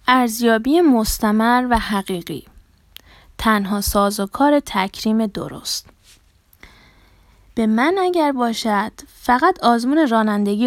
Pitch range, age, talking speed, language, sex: 195-250 Hz, 20-39, 95 wpm, Persian, female